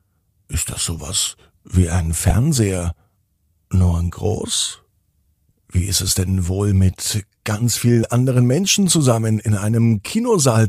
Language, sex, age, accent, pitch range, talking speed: German, male, 50-69, German, 90-115 Hz, 130 wpm